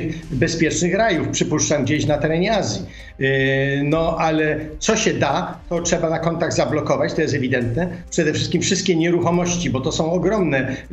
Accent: native